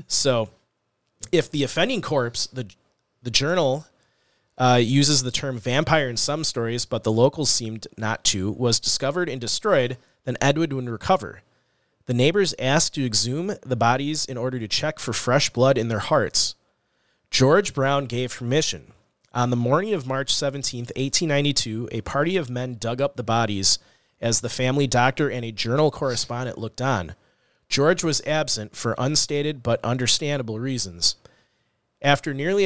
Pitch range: 120-145 Hz